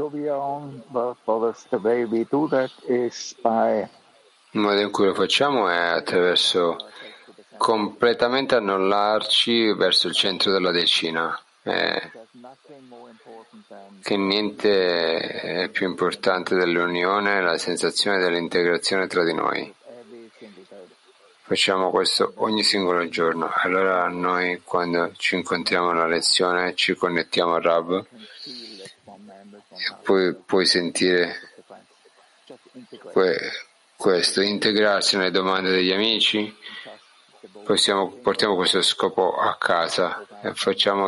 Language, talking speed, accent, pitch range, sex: Italian, 95 wpm, native, 90-110 Hz, male